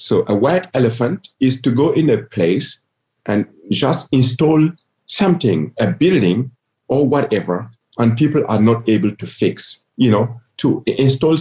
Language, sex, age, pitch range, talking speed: English, male, 50-69, 110-140 Hz, 155 wpm